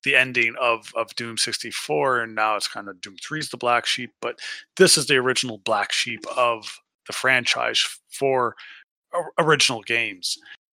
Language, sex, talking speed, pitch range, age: English, male, 160 wpm, 105-135 Hz, 30-49